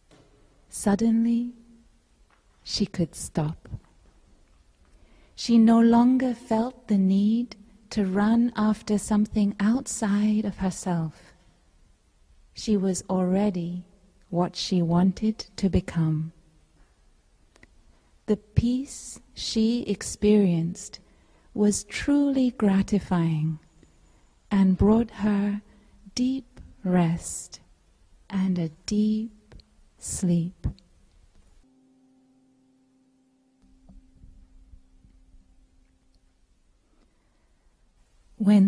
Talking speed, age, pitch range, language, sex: 65 wpm, 30-49, 155-225 Hz, Vietnamese, female